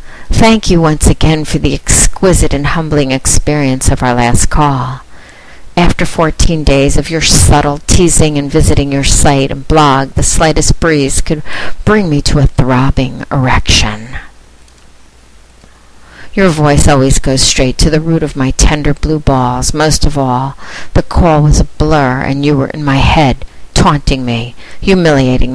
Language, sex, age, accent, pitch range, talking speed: English, female, 50-69, American, 125-155 Hz, 155 wpm